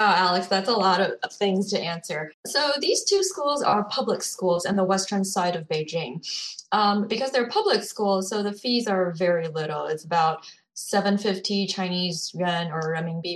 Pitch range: 175-215 Hz